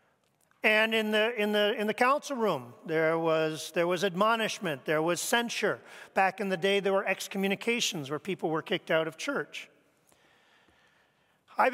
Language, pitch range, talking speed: English, 165-235 Hz, 165 wpm